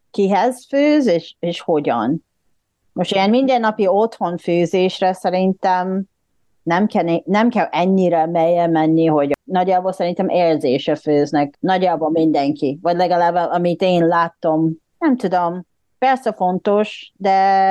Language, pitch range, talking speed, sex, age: Hungarian, 165-215 Hz, 120 wpm, female, 30-49